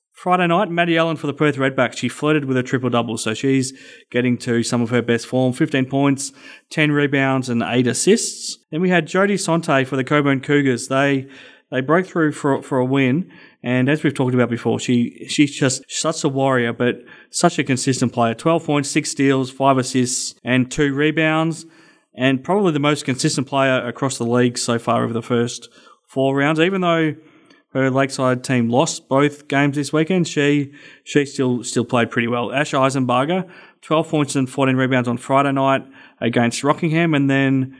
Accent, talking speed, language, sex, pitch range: Australian, 190 wpm, English, male, 125-150 Hz